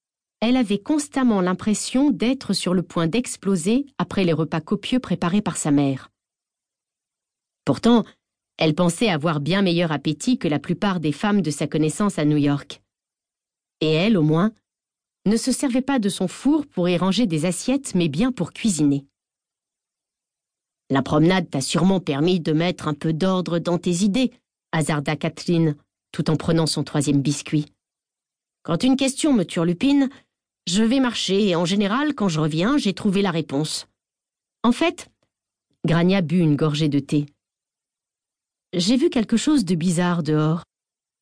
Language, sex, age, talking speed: French, female, 40-59, 160 wpm